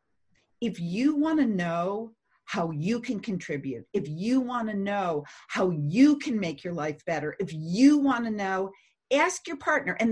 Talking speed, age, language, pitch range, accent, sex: 180 wpm, 50-69, English, 190-275 Hz, American, female